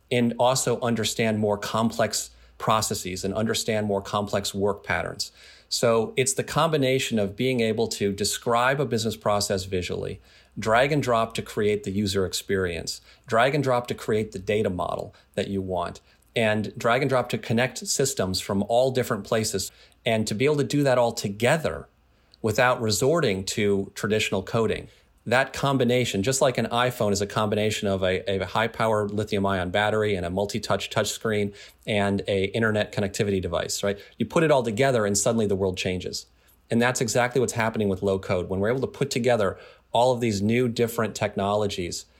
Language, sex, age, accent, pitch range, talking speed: English, male, 40-59, American, 100-120 Hz, 180 wpm